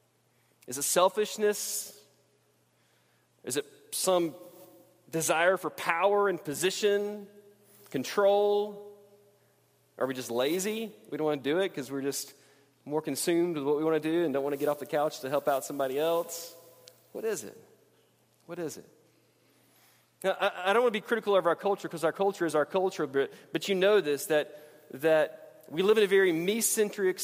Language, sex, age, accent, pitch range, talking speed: English, male, 30-49, American, 160-200 Hz, 175 wpm